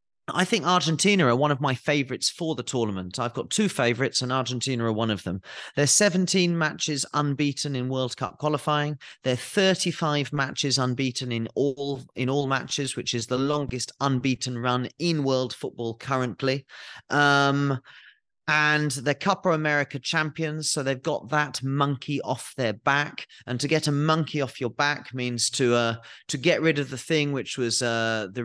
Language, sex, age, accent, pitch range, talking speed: English, male, 30-49, British, 120-150 Hz, 175 wpm